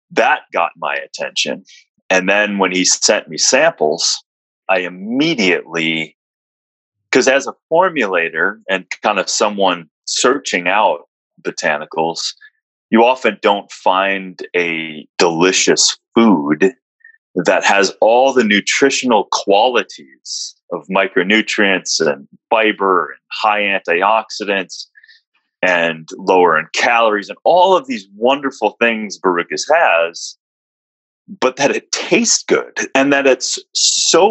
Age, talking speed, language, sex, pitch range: 30-49, 115 wpm, English, male, 90-135 Hz